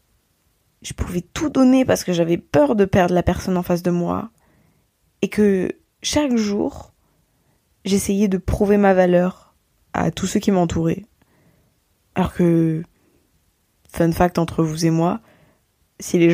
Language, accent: French, French